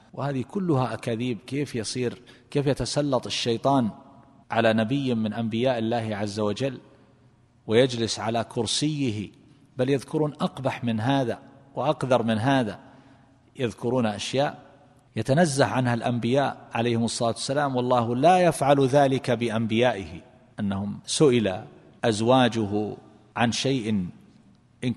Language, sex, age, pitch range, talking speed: Arabic, male, 40-59, 110-130 Hz, 110 wpm